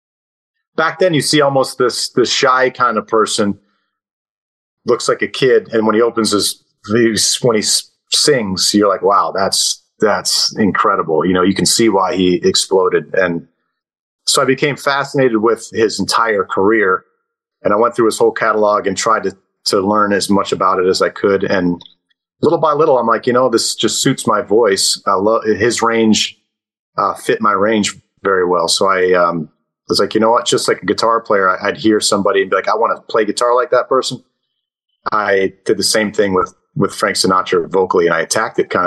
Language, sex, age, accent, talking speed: English, male, 30-49, American, 200 wpm